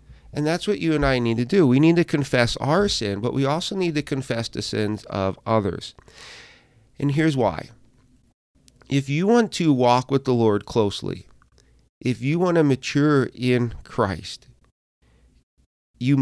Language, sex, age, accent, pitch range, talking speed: English, male, 40-59, American, 110-140 Hz, 165 wpm